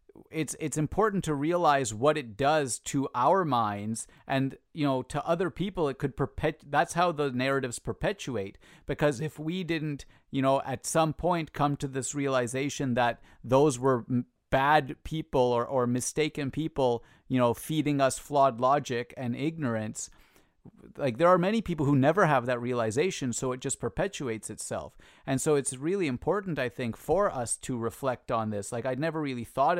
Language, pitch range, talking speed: English, 120-150 Hz, 180 wpm